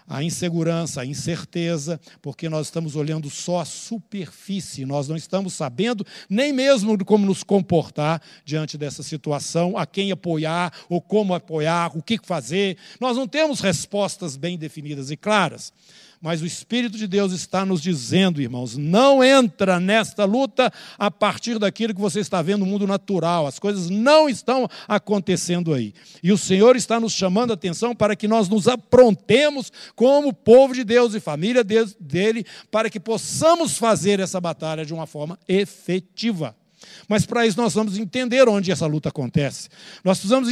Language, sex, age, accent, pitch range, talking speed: Portuguese, male, 60-79, Brazilian, 175-235 Hz, 165 wpm